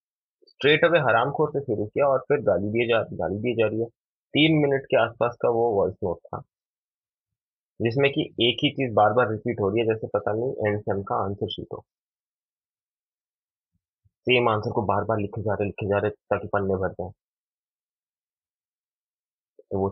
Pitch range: 95-120 Hz